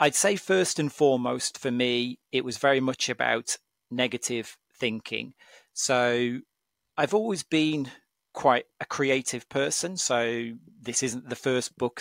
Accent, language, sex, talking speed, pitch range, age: British, English, male, 140 wpm, 120-145 Hz, 40-59